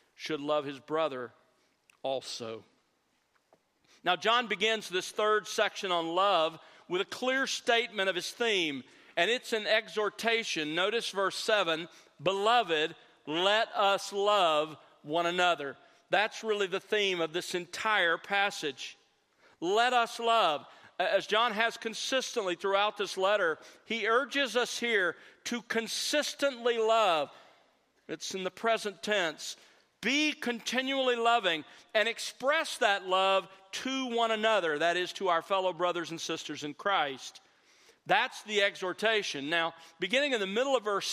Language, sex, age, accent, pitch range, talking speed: English, male, 50-69, American, 175-235 Hz, 135 wpm